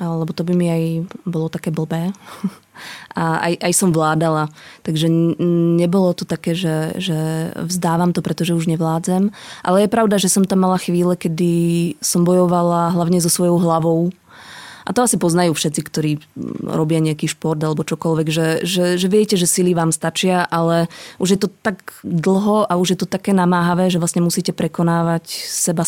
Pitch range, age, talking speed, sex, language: 165-180 Hz, 20-39, 175 wpm, female, Slovak